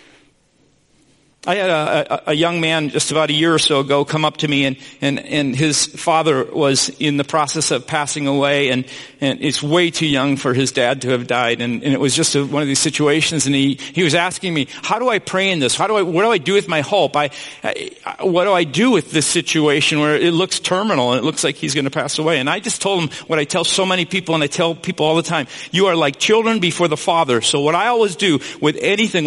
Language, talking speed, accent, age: English, 260 wpm, American, 50-69